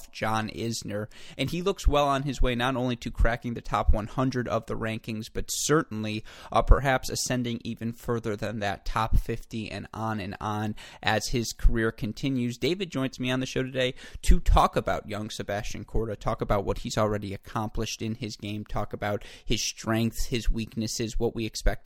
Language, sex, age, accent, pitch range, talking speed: English, male, 20-39, American, 105-120 Hz, 190 wpm